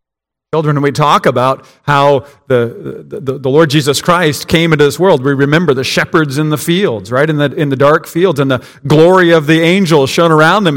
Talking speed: 215 wpm